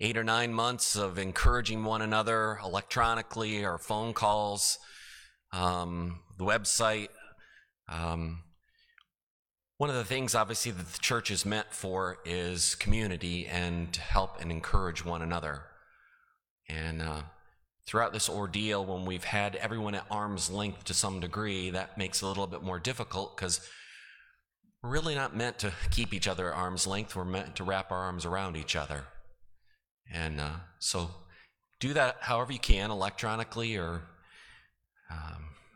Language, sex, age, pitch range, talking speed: English, male, 30-49, 90-120 Hz, 155 wpm